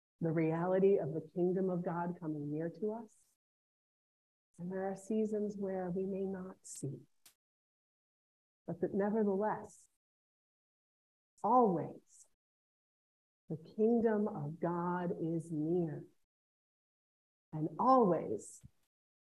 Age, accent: 40-59, American